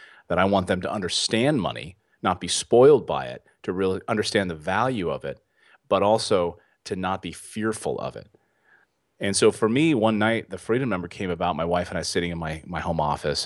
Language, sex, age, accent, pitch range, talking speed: English, male, 30-49, American, 85-110 Hz, 215 wpm